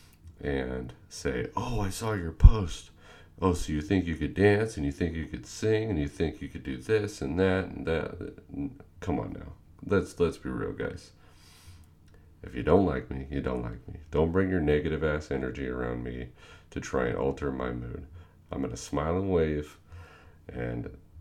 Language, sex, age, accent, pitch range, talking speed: English, male, 40-59, American, 70-90 Hz, 190 wpm